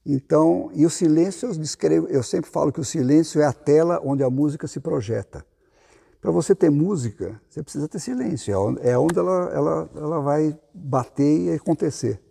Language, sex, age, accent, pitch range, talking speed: Portuguese, male, 50-69, Brazilian, 110-155 Hz, 180 wpm